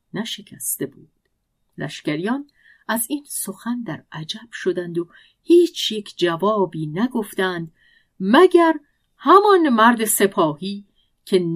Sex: female